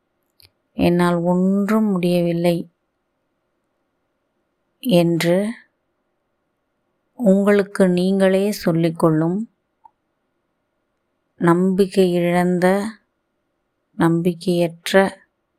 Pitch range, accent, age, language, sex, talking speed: 170-190 Hz, native, 20-39, Tamil, female, 40 wpm